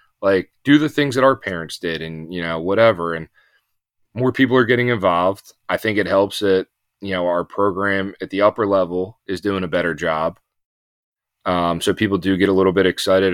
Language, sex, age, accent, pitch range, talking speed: English, male, 30-49, American, 90-115 Hz, 200 wpm